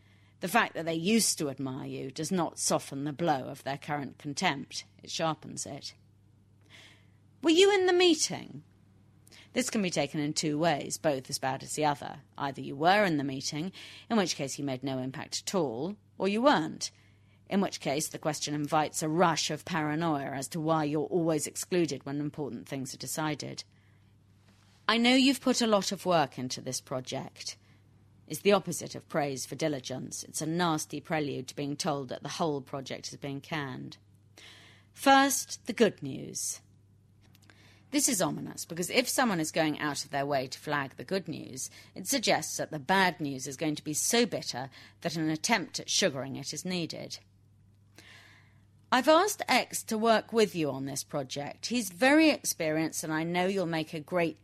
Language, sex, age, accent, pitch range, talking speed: English, female, 40-59, British, 120-175 Hz, 185 wpm